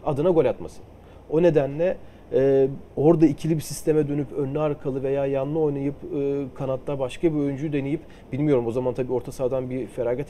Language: Turkish